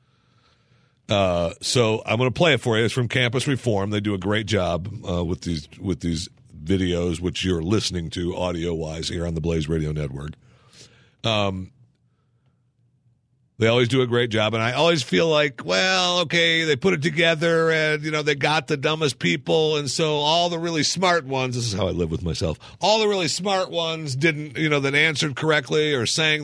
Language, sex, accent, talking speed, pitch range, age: English, male, American, 205 wpm, 110-145 Hz, 50-69